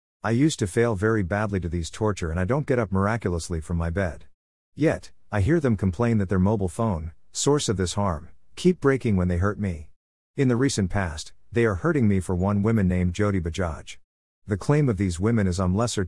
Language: English